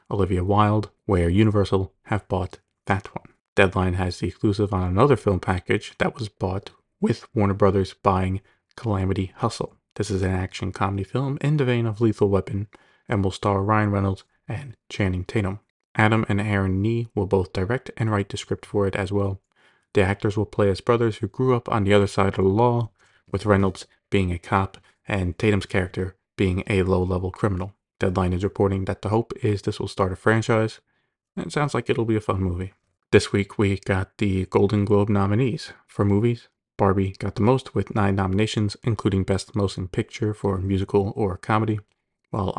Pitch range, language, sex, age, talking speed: 95-110 Hz, English, male, 30-49, 195 wpm